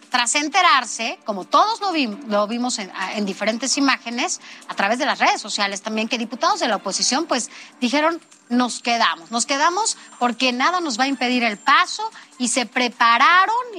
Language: Spanish